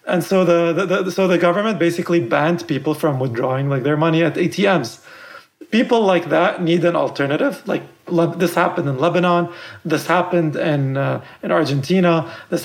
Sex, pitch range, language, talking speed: male, 155-185 Hz, English, 175 wpm